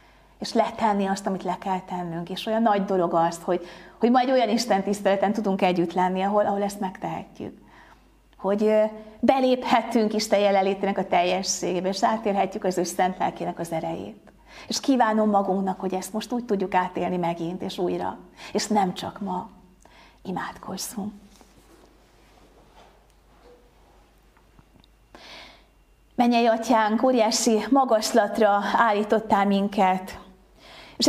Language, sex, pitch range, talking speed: Hungarian, female, 185-225 Hz, 120 wpm